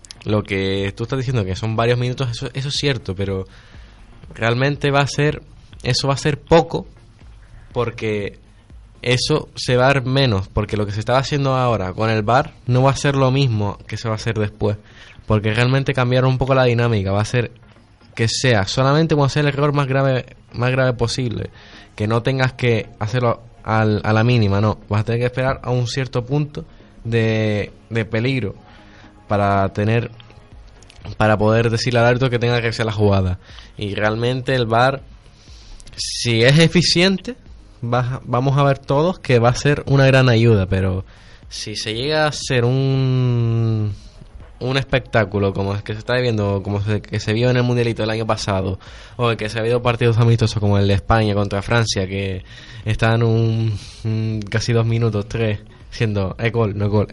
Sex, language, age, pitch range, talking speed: male, Spanish, 20-39, 105-125 Hz, 190 wpm